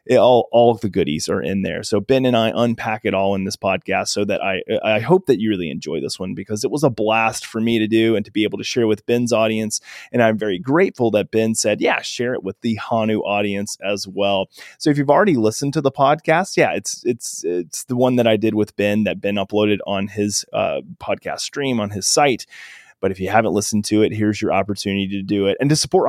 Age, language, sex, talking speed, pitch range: 20-39, English, male, 255 wpm, 100-130 Hz